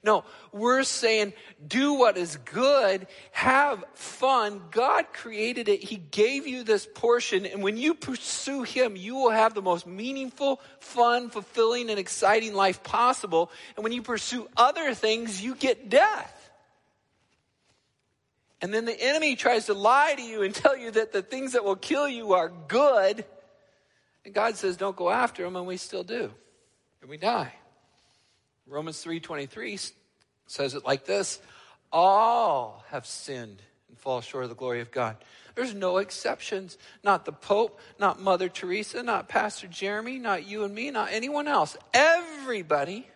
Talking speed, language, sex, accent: 165 wpm, English, male, American